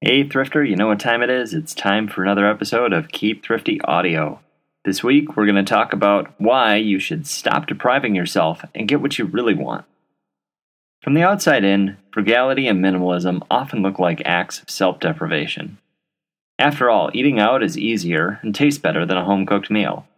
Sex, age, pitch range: male, 30-49, 95-140 Hz